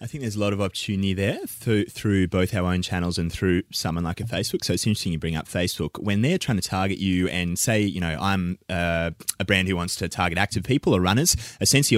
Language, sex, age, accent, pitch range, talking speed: English, male, 20-39, Australian, 85-100 Hz, 250 wpm